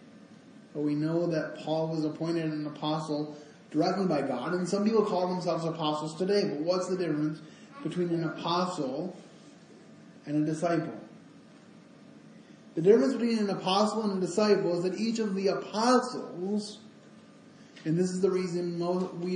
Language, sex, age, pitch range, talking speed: English, male, 20-39, 160-210 Hz, 150 wpm